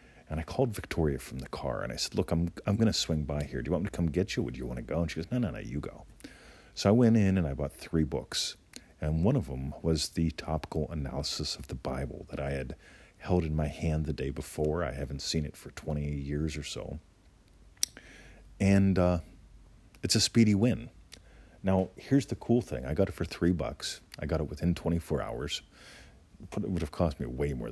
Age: 40-59